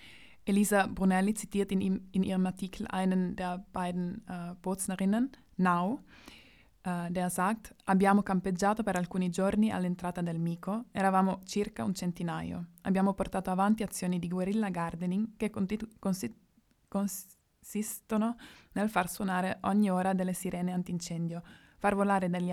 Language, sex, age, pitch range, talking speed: Italian, female, 20-39, 180-200 Hz, 130 wpm